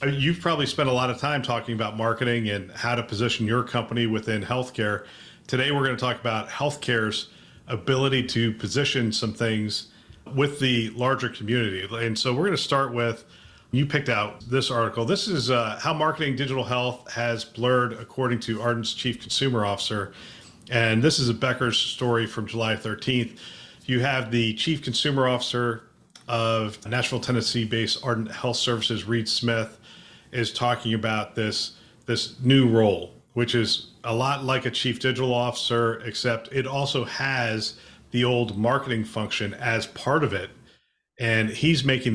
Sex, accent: male, American